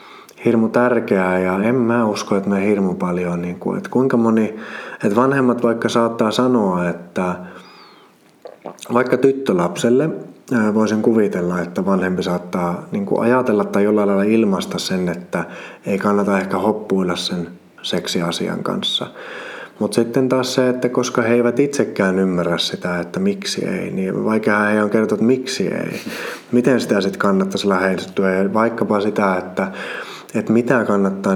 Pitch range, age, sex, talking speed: 90-120 Hz, 30-49, male, 145 wpm